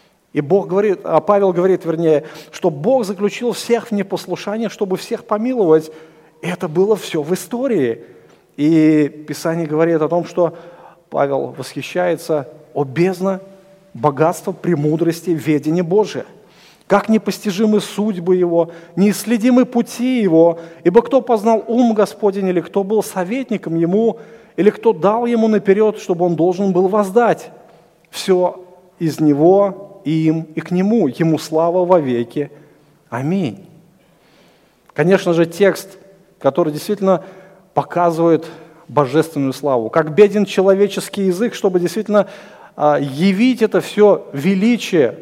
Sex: male